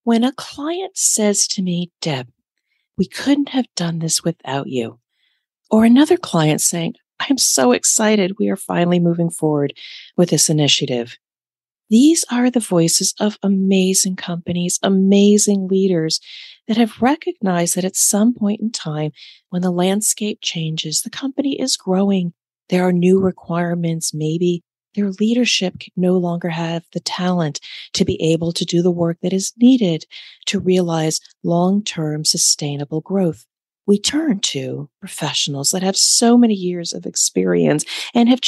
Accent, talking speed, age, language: American, 150 wpm, 40-59, English